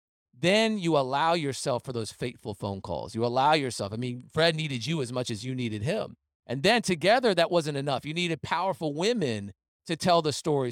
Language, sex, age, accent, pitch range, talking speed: English, male, 40-59, American, 115-150 Hz, 205 wpm